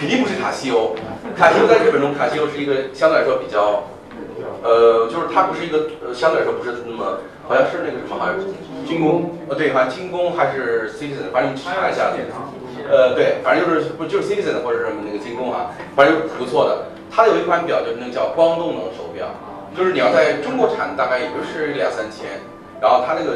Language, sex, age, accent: Chinese, male, 30-49, native